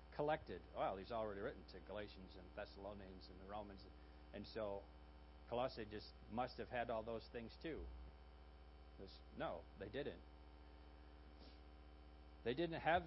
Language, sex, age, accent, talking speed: English, male, 50-69, American, 135 wpm